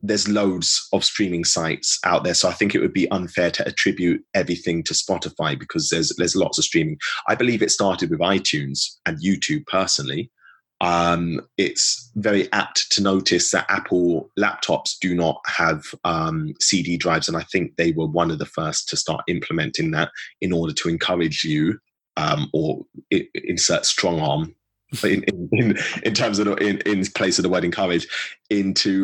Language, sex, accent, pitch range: English, male, British, 85-100 Hz